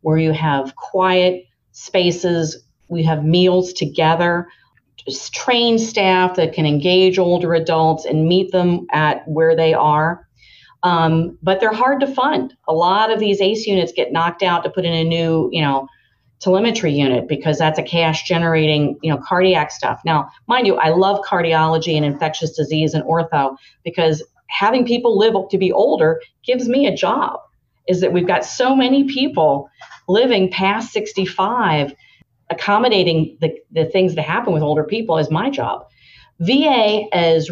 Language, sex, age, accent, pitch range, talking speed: English, female, 40-59, American, 155-190 Hz, 160 wpm